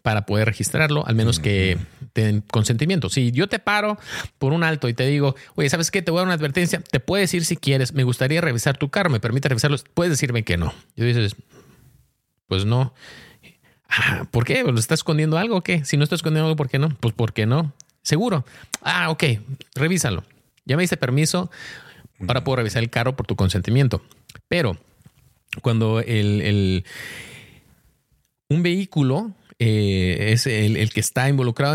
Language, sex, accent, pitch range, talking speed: Spanish, male, Mexican, 110-150 Hz, 185 wpm